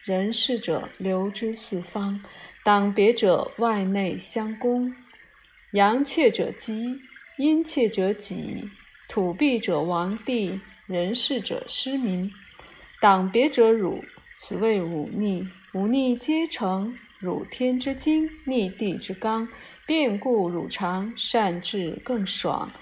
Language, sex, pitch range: Chinese, female, 195-255 Hz